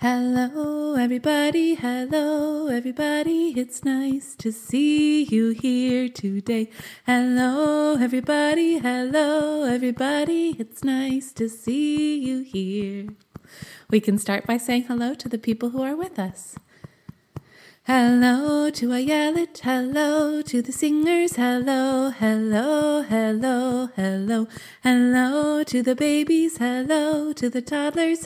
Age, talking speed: 20-39, 115 wpm